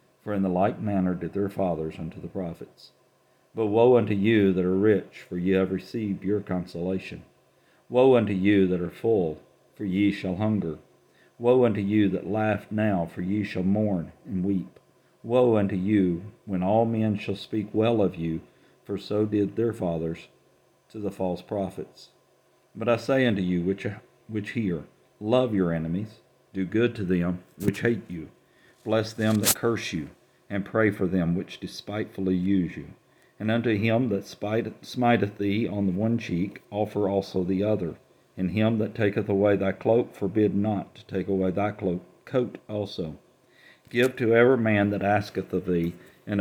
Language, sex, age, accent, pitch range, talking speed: English, male, 50-69, American, 95-110 Hz, 175 wpm